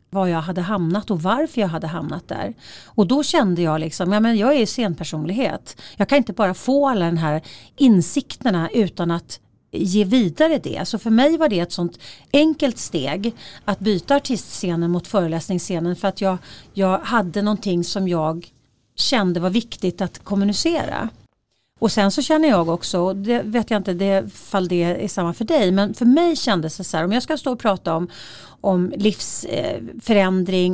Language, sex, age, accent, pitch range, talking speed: Swedish, female, 40-59, native, 175-225 Hz, 185 wpm